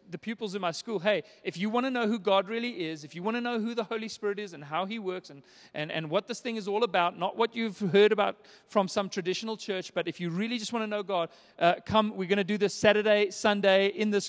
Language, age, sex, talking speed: English, 30-49, male, 280 wpm